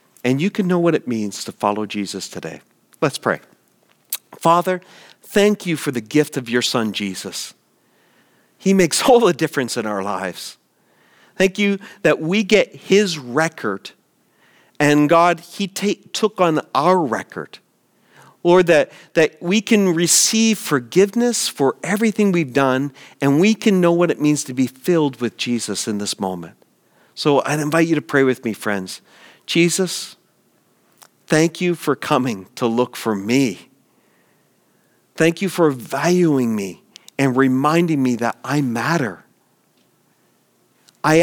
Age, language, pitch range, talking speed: 40-59, English, 125-180 Hz, 145 wpm